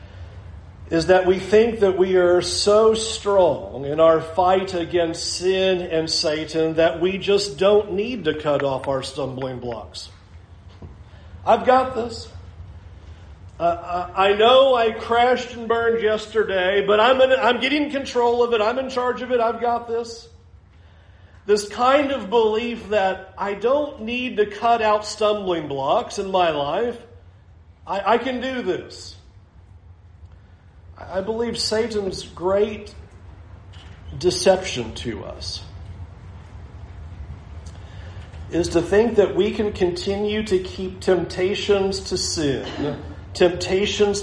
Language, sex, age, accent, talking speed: English, male, 40-59, American, 130 wpm